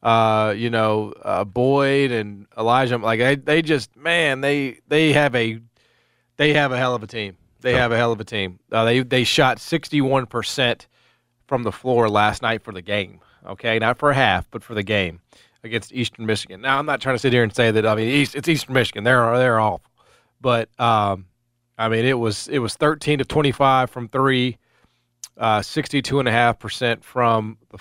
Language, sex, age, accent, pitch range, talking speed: English, male, 30-49, American, 110-135 Hz, 190 wpm